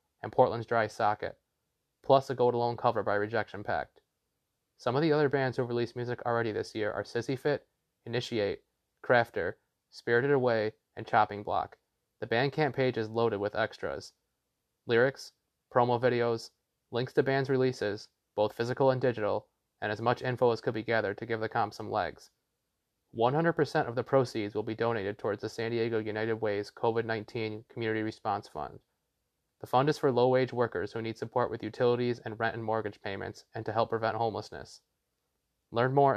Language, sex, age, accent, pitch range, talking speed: English, male, 20-39, American, 115-130 Hz, 180 wpm